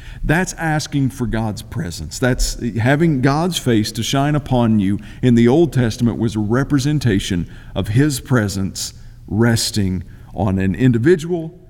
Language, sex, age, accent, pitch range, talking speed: English, male, 50-69, American, 115-145 Hz, 140 wpm